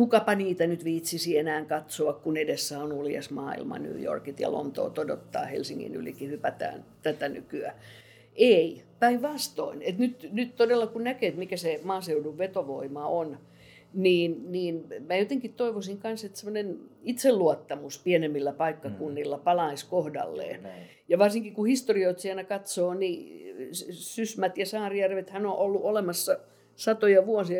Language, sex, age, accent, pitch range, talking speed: Finnish, female, 50-69, native, 160-215 Hz, 130 wpm